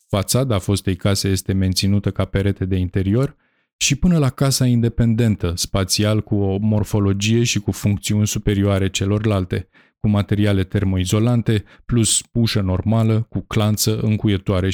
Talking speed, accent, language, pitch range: 135 wpm, native, Romanian, 100-125 Hz